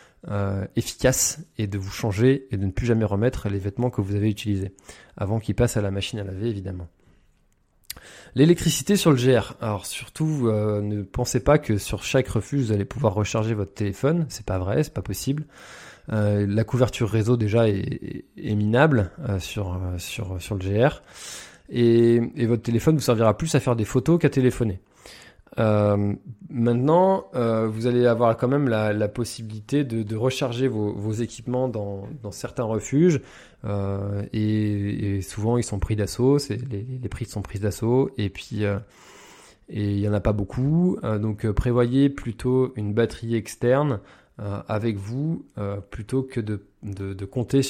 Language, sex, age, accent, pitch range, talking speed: French, male, 20-39, French, 100-125 Hz, 180 wpm